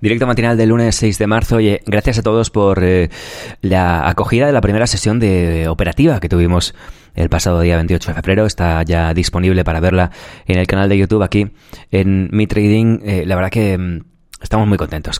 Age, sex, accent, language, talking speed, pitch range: 20-39, male, Spanish, Spanish, 190 wpm, 85-105 Hz